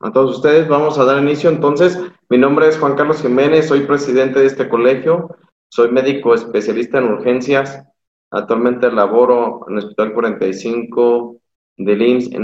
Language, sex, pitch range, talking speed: Spanish, male, 115-140 Hz, 160 wpm